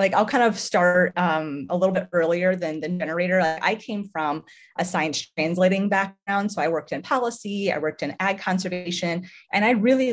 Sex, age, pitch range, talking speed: female, 30-49, 155-190 Hz, 195 wpm